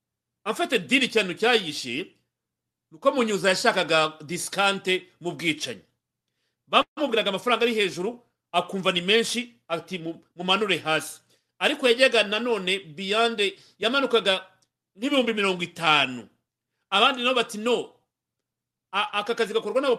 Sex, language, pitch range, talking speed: male, English, 170-230 Hz, 100 wpm